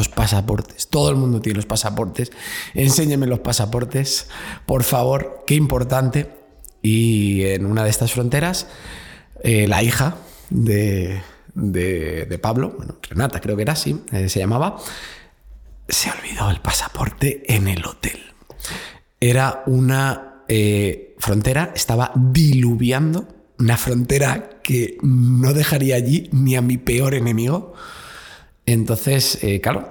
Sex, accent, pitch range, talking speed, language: male, Spanish, 105-130 Hz, 130 wpm, Spanish